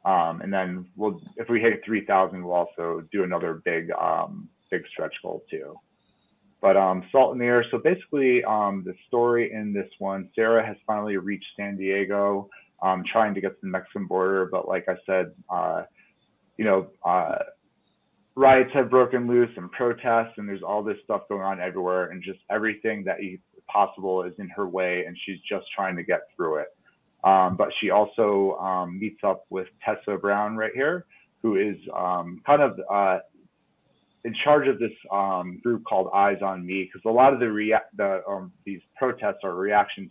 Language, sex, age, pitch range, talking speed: English, male, 30-49, 95-115 Hz, 190 wpm